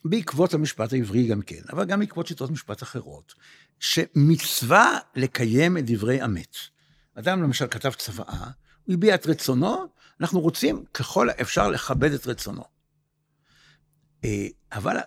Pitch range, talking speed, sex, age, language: 110-160 Hz, 125 wpm, male, 60-79, Hebrew